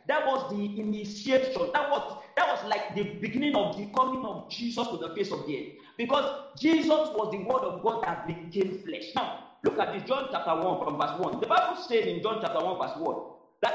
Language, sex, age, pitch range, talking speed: English, male, 40-59, 230-305 Hz, 225 wpm